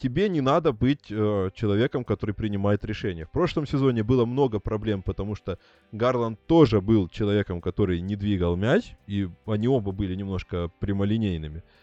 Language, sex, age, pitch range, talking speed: Russian, male, 20-39, 95-130 Hz, 155 wpm